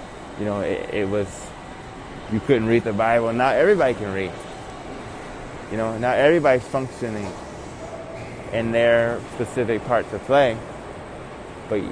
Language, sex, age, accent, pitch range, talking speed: English, male, 20-39, American, 105-125 Hz, 130 wpm